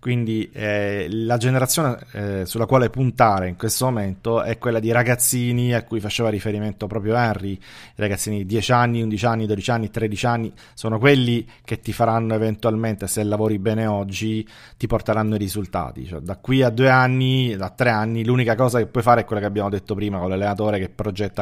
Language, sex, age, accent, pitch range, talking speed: Italian, male, 30-49, native, 105-125 Hz, 195 wpm